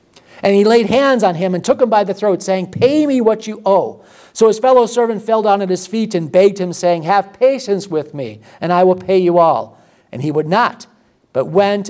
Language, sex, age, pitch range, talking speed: English, male, 50-69, 165-205 Hz, 235 wpm